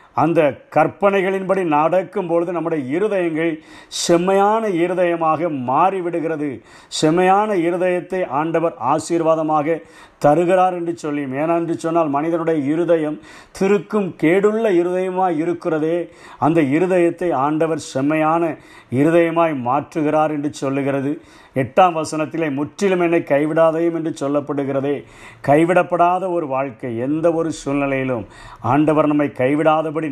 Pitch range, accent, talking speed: 145-170 Hz, native, 95 wpm